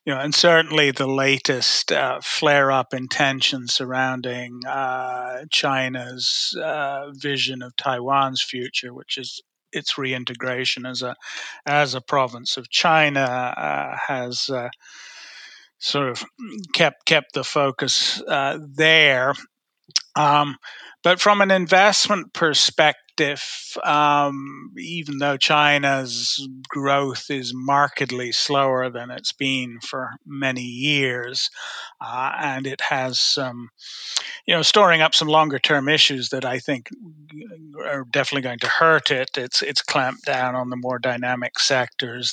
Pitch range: 125-145 Hz